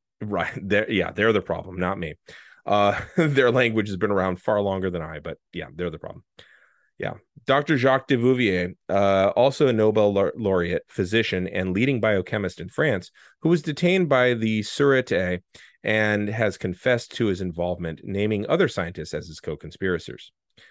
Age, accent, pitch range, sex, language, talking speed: 30-49, American, 90-115 Hz, male, English, 170 wpm